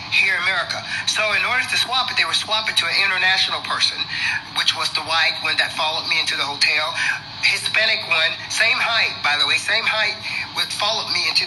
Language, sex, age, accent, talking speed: English, male, 30-49, American, 210 wpm